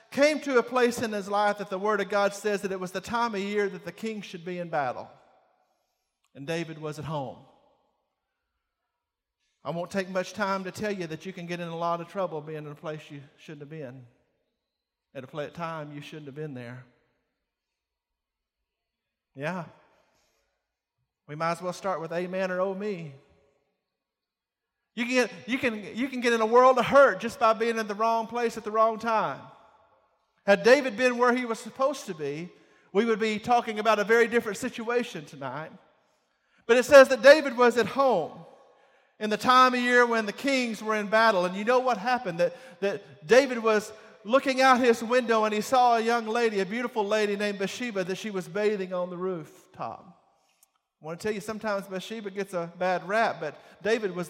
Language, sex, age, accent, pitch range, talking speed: English, male, 50-69, American, 175-230 Hz, 205 wpm